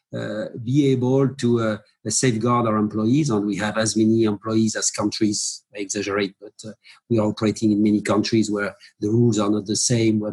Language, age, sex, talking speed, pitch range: English, 50-69, male, 205 wpm, 110-130 Hz